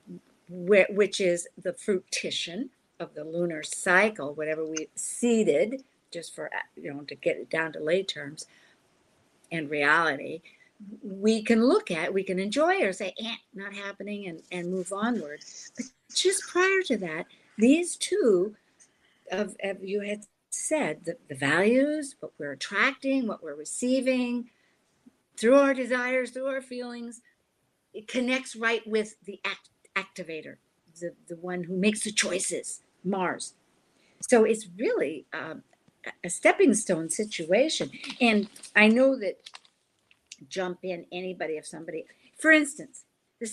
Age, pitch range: 50-69, 180-255 Hz